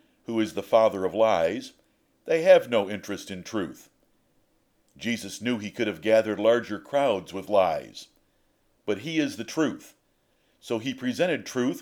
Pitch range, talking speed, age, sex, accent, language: 110-150 Hz, 155 wpm, 50-69, male, American, English